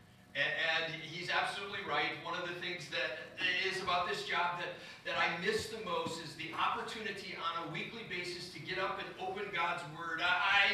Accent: American